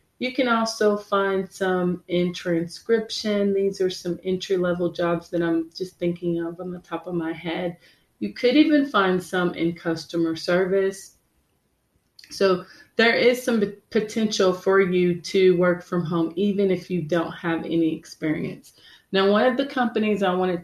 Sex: female